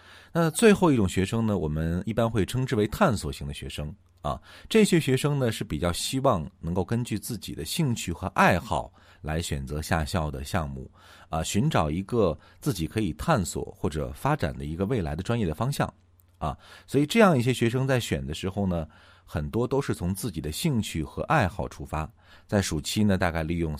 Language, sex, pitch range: Chinese, male, 80-115 Hz